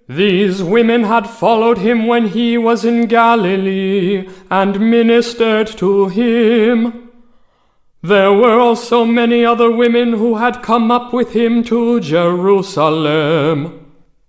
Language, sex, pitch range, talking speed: English, male, 195-235 Hz, 120 wpm